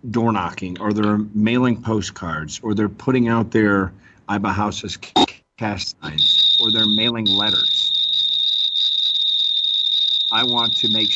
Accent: American